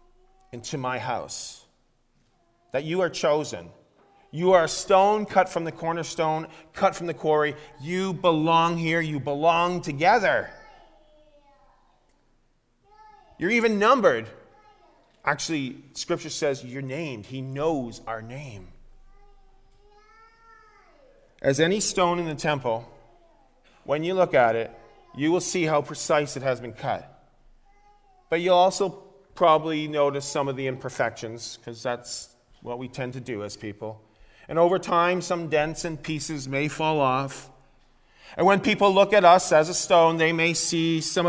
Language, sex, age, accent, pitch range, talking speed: English, male, 30-49, American, 135-180 Hz, 140 wpm